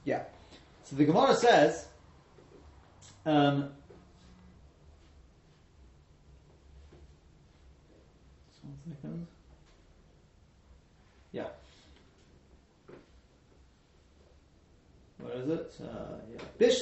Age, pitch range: 30-49, 95-160 Hz